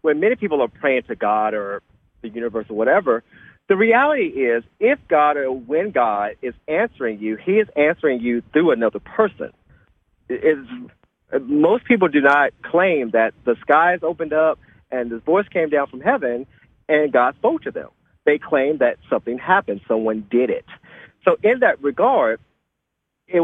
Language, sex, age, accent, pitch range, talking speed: English, male, 40-59, American, 125-180 Hz, 165 wpm